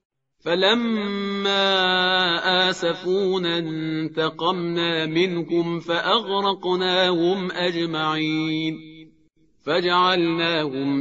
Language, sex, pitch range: Persian, male, 170-205 Hz